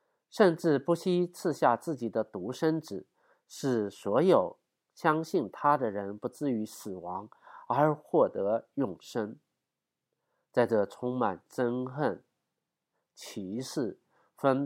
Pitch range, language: 120-165 Hz, Chinese